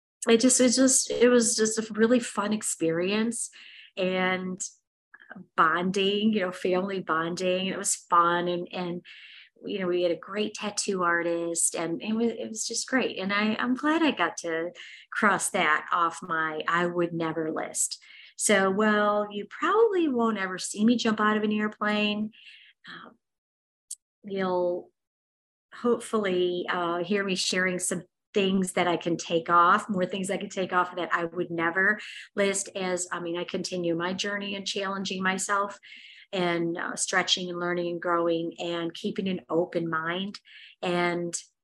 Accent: American